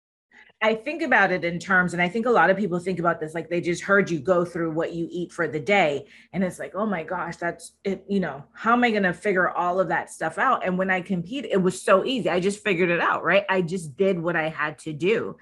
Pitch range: 165-210 Hz